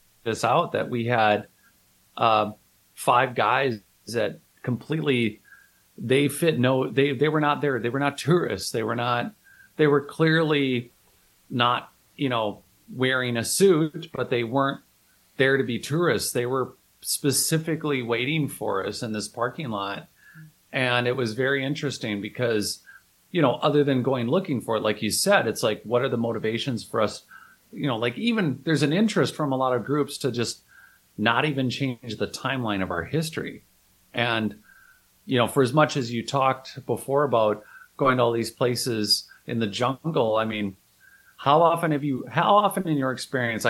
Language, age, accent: English, 40-59, American